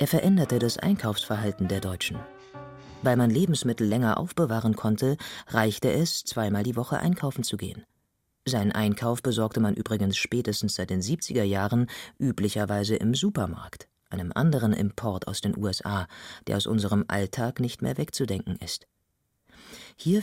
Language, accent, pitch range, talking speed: German, German, 105-145 Hz, 140 wpm